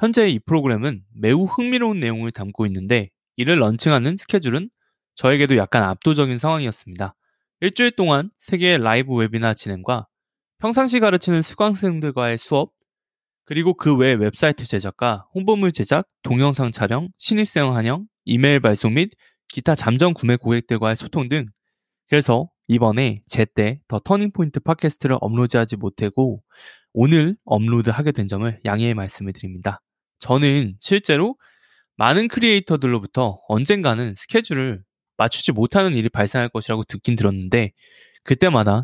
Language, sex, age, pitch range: Korean, male, 20-39, 115-160 Hz